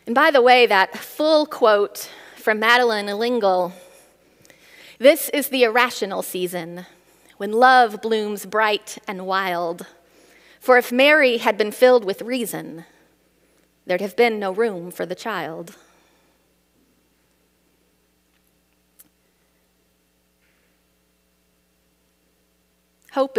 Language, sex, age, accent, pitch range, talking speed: English, female, 30-49, American, 180-280 Hz, 95 wpm